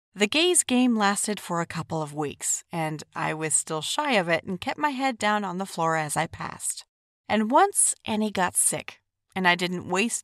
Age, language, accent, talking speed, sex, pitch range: 30-49, English, American, 210 wpm, female, 165-235 Hz